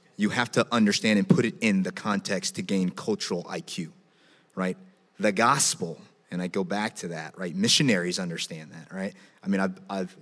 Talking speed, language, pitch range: 190 wpm, English, 105-160 Hz